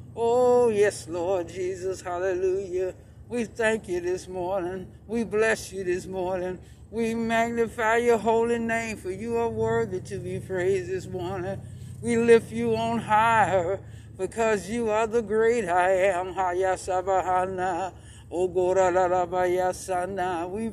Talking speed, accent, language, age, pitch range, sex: 120 wpm, American, English, 60-79, 170-220 Hz, male